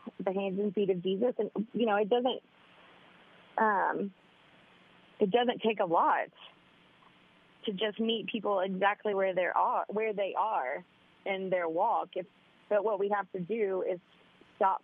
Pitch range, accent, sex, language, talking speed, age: 185-230 Hz, American, female, English, 155 wpm, 30-49